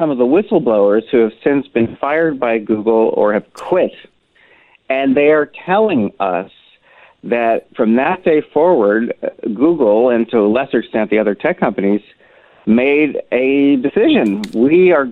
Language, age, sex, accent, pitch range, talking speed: English, 50-69, male, American, 115-150 Hz, 155 wpm